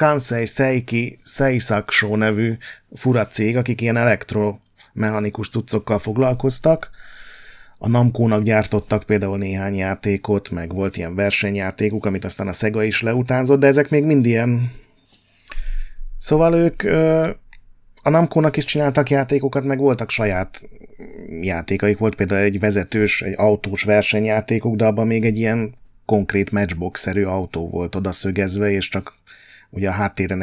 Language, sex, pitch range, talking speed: Hungarian, male, 100-120 Hz, 130 wpm